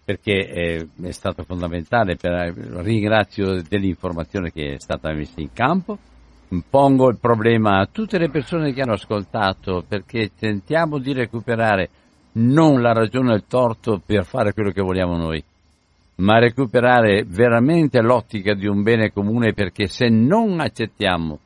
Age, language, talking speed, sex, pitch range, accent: 60-79, Italian, 145 wpm, male, 90-125 Hz, native